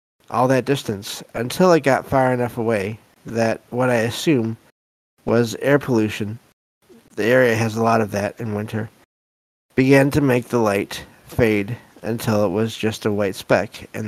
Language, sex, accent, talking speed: English, male, American, 165 wpm